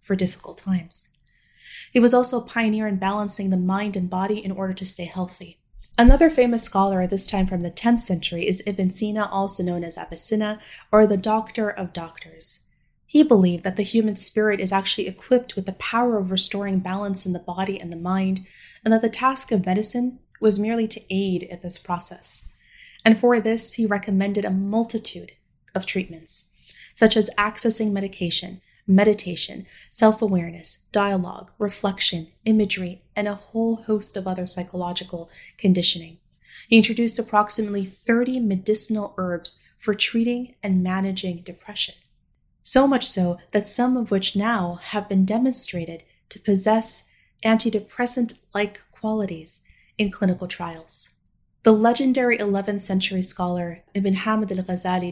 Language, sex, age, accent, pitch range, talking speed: English, female, 30-49, American, 185-220 Hz, 150 wpm